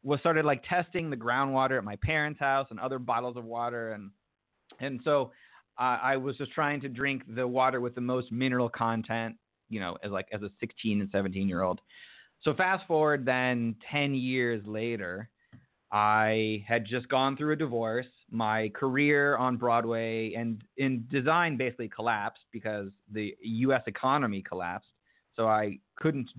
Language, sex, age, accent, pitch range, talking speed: English, male, 30-49, American, 110-135 Hz, 170 wpm